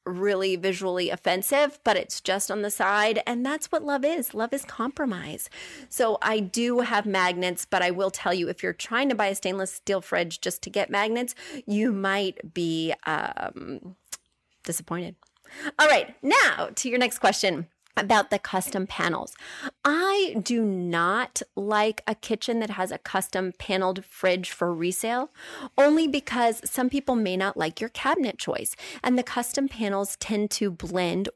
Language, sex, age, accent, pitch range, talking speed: English, female, 30-49, American, 185-245 Hz, 165 wpm